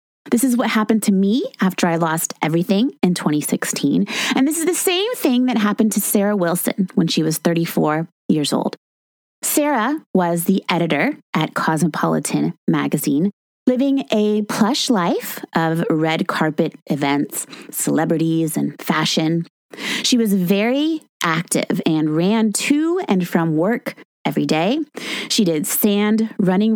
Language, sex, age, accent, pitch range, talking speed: English, female, 20-39, American, 180-255 Hz, 140 wpm